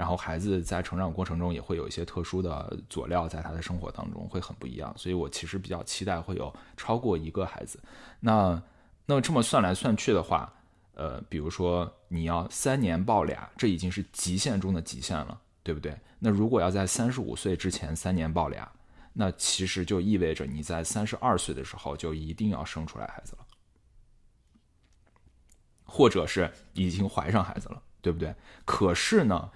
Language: Chinese